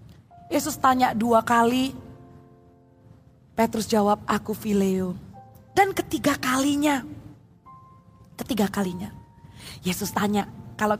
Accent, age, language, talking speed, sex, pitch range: native, 20-39, Indonesian, 85 wpm, female, 230-310 Hz